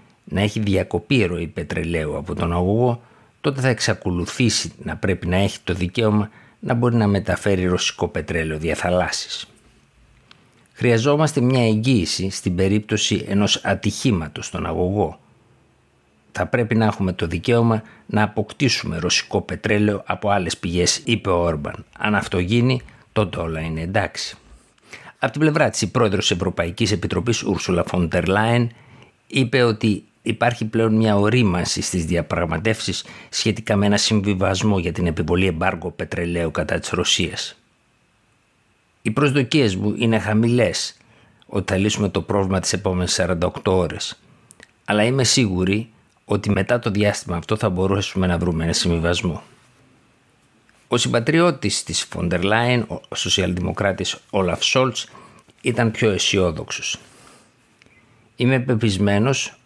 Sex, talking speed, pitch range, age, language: male, 125 wpm, 90-115 Hz, 60-79, Greek